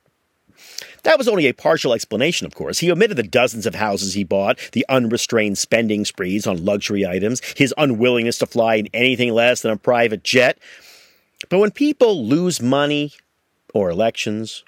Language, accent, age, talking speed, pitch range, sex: English, American, 50-69, 170 wpm, 105-145 Hz, male